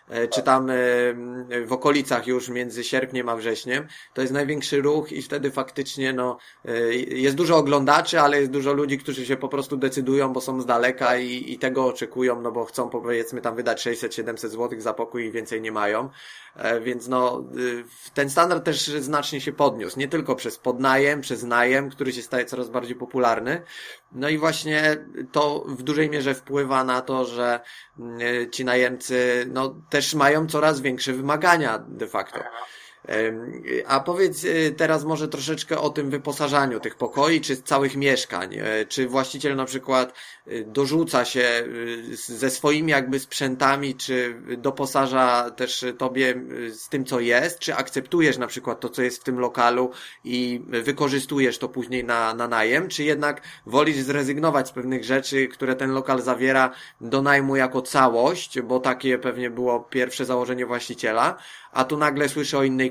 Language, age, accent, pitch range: Polish, 20-39, native, 125-140 Hz